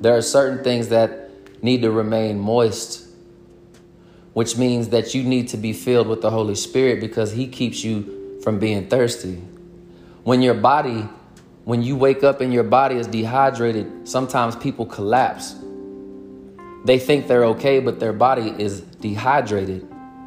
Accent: American